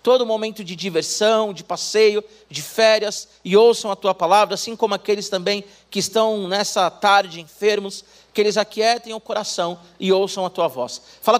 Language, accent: Portuguese, Brazilian